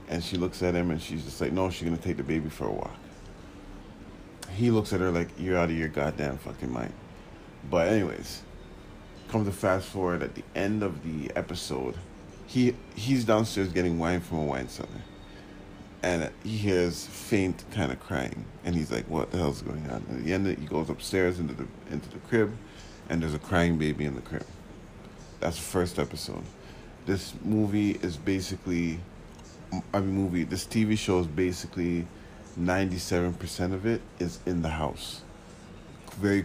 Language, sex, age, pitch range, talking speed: English, male, 40-59, 85-100 Hz, 185 wpm